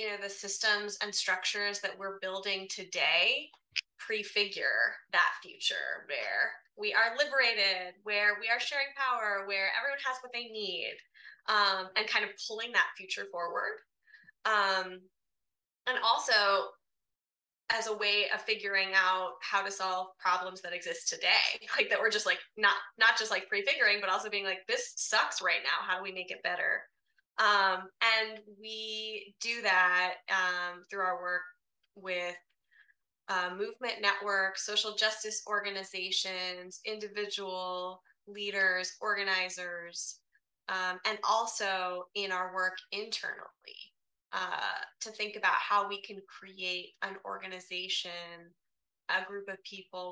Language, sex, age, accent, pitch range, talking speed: English, female, 20-39, American, 185-215 Hz, 140 wpm